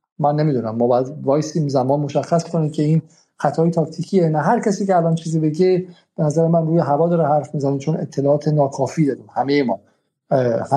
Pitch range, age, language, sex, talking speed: 150-180 Hz, 50-69, Persian, male, 160 wpm